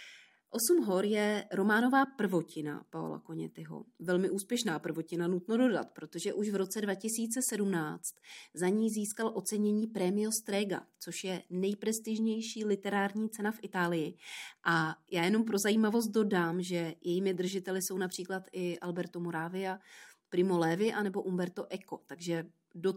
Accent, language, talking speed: native, Czech, 135 wpm